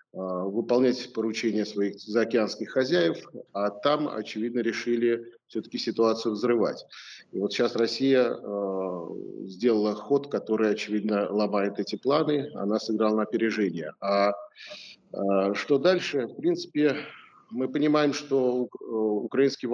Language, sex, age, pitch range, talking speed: Russian, male, 40-59, 105-135 Hz, 115 wpm